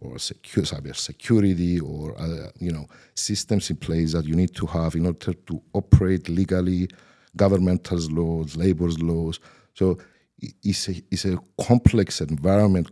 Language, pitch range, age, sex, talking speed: Arabic, 80-100 Hz, 50-69, male, 155 wpm